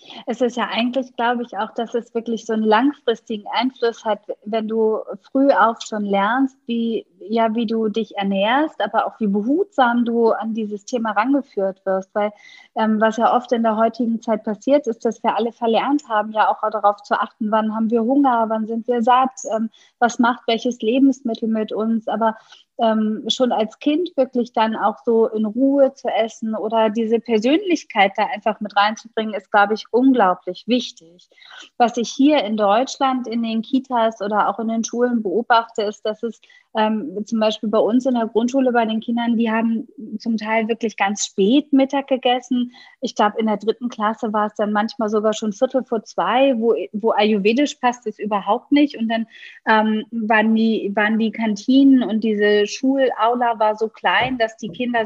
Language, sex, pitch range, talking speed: German, female, 215-250 Hz, 190 wpm